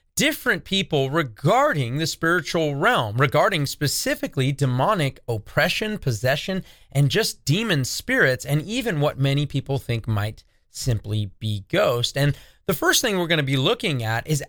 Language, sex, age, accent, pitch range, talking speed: English, male, 30-49, American, 125-170 Hz, 150 wpm